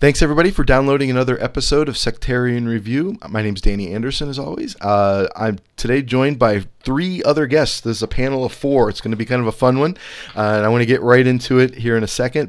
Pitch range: 105-130 Hz